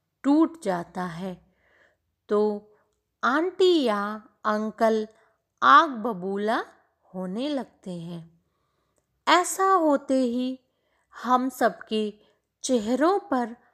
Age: 20-39